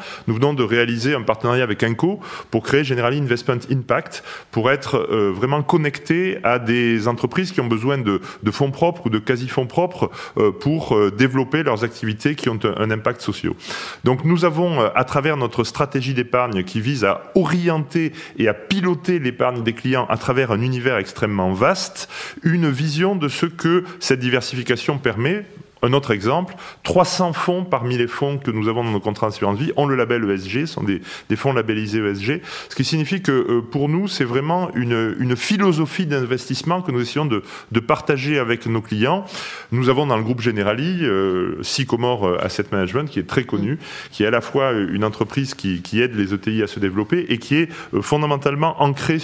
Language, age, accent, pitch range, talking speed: French, 30-49, French, 115-150 Hz, 195 wpm